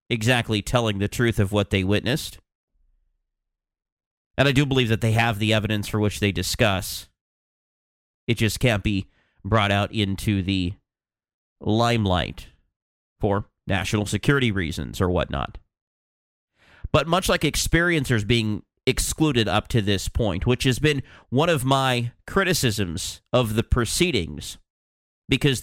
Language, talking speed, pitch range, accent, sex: English, 135 wpm, 100-140 Hz, American, male